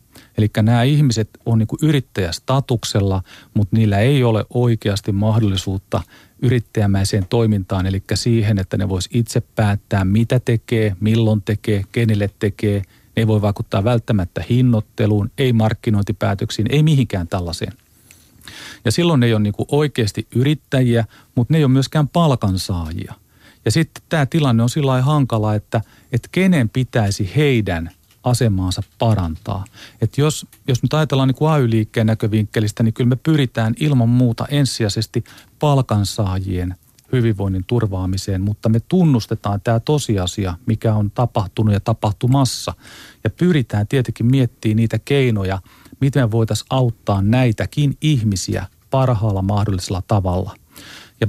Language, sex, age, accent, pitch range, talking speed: Finnish, male, 40-59, native, 105-125 Hz, 130 wpm